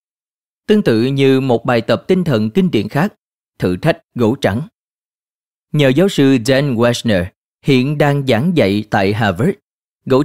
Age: 30-49